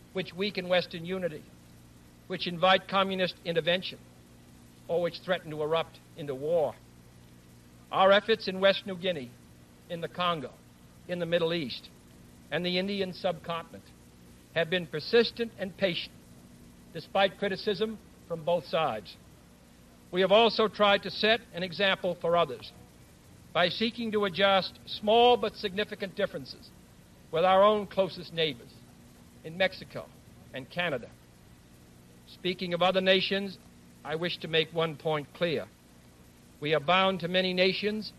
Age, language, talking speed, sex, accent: 60-79, English, 135 wpm, male, American